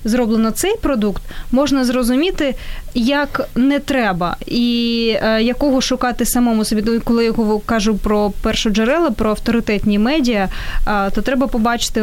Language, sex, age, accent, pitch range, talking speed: Ukrainian, female, 20-39, native, 220-260 Hz, 140 wpm